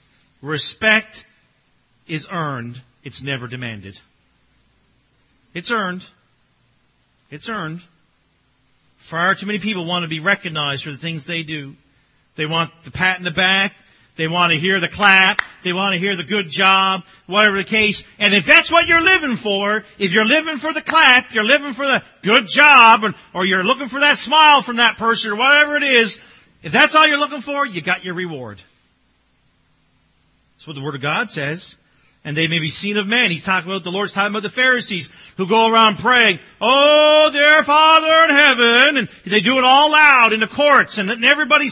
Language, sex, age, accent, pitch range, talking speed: English, male, 50-69, American, 170-260 Hz, 190 wpm